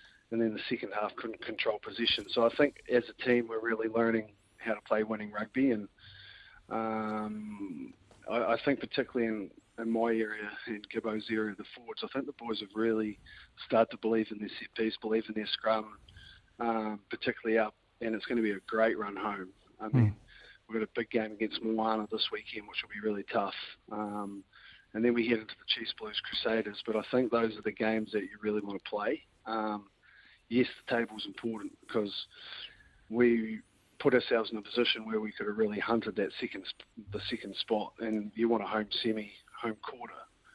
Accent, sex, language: Australian, male, English